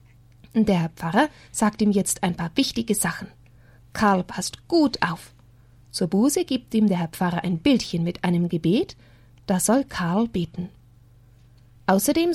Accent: German